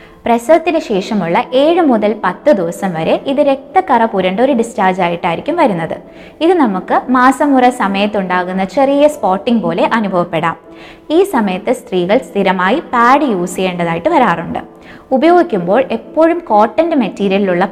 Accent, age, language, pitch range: native, 20-39, Malayalam, 195-280 Hz